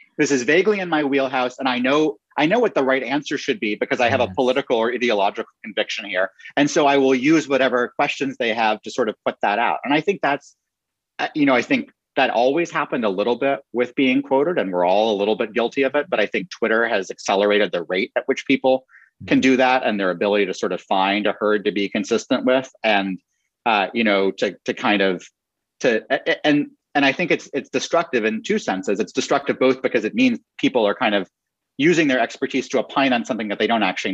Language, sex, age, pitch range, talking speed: English, male, 30-49, 105-150 Hz, 235 wpm